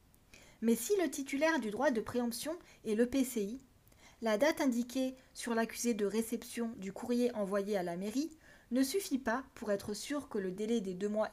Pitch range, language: 210-260 Hz, French